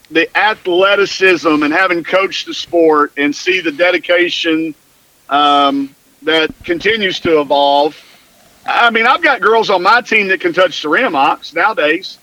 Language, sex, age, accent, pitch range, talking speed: English, male, 50-69, American, 165-225 Hz, 150 wpm